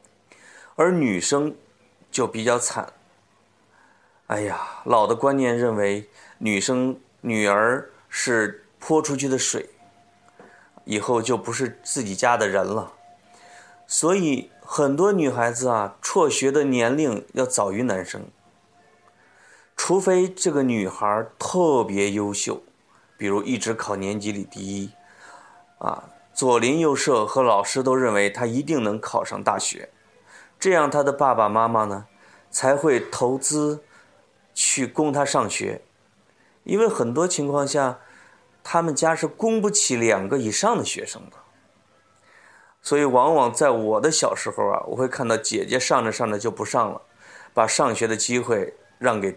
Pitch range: 105-140 Hz